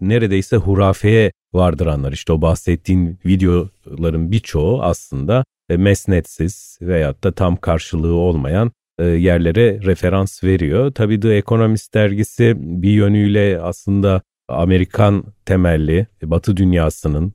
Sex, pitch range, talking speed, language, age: male, 85-110 Hz, 105 wpm, Turkish, 40-59